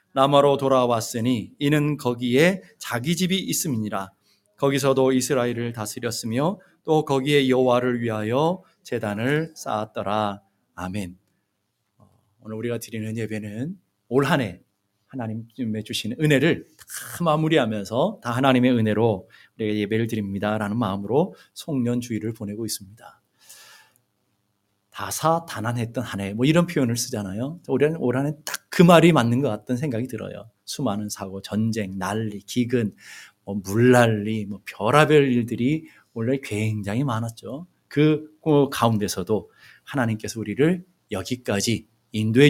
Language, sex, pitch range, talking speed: English, male, 105-140 Hz, 100 wpm